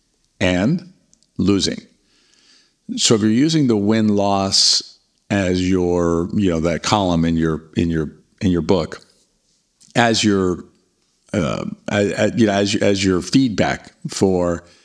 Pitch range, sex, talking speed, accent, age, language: 90-105 Hz, male, 135 wpm, American, 50-69, English